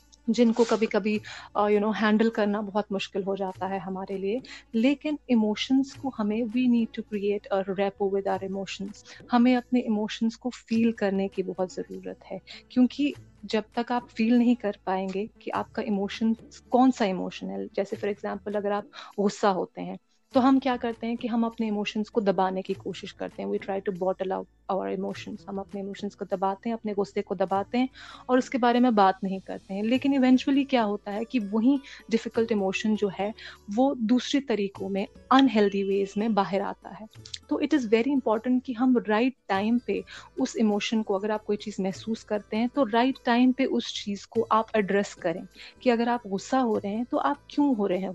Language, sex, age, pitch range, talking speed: Urdu, female, 30-49, 195-245 Hz, 205 wpm